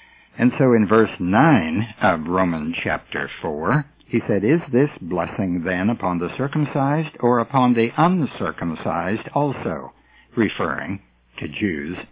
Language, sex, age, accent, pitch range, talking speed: English, male, 60-79, American, 100-150 Hz, 130 wpm